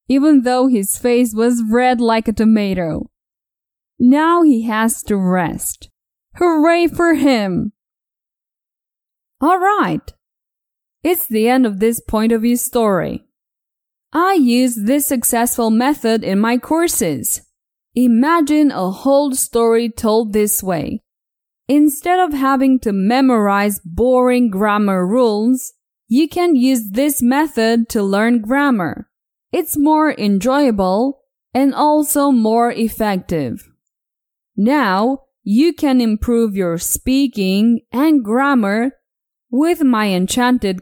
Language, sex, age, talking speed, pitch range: English, female, 20-39, 110 wpm, 220-285 Hz